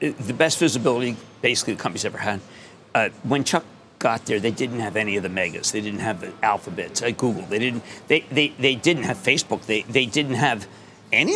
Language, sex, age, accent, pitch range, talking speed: English, male, 50-69, American, 115-155 Hz, 215 wpm